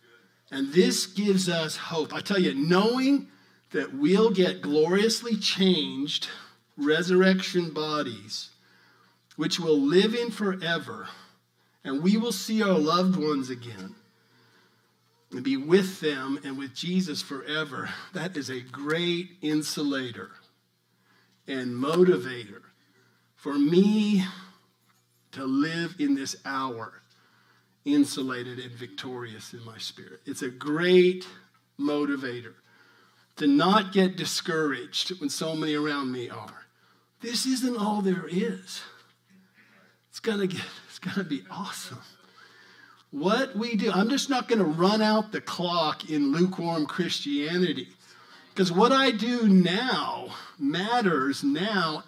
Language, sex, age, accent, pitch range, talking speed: English, male, 50-69, American, 125-190 Hz, 120 wpm